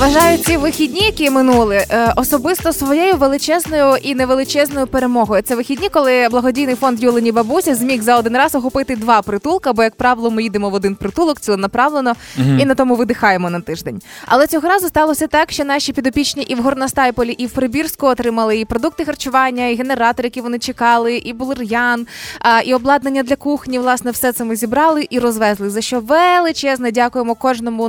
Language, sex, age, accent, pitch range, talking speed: Ukrainian, female, 20-39, native, 230-280 Hz, 175 wpm